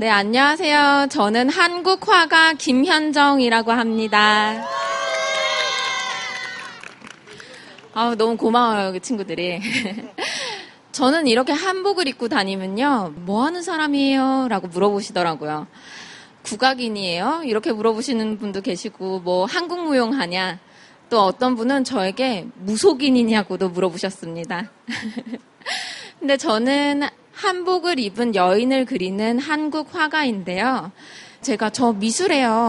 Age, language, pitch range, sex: 20-39, Korean, 210-280 Hz, female